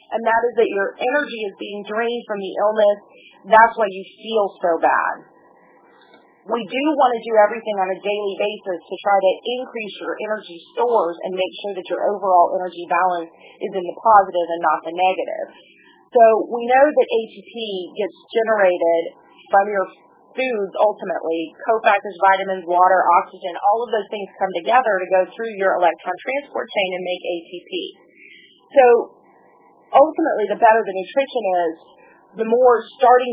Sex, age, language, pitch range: female, 30-49, English, 185-230 Hz